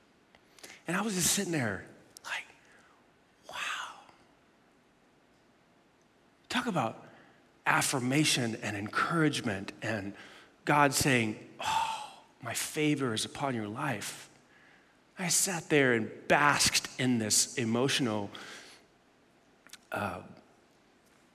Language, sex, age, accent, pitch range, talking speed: English, male, 40-59, American, 115-175 Hz, 90 wpm